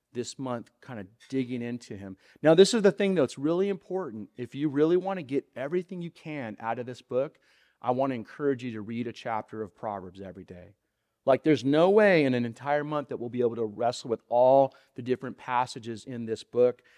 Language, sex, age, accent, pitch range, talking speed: English, male, 30-49, American, 120-160 Hz, 225 wpm